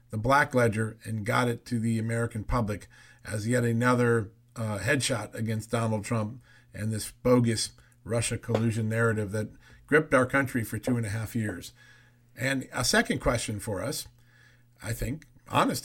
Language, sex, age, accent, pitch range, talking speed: English, male, 50-69, American, 115-135 Hz, 165 wpm